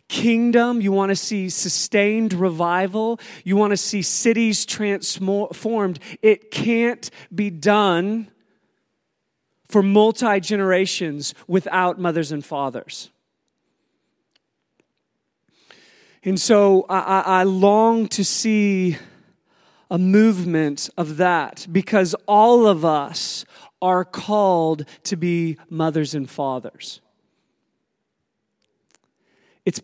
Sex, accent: male, American